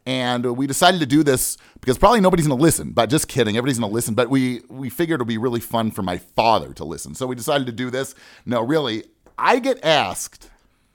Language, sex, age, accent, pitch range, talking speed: English, male, 40-59, American, 125-180 Hz, 240 wpm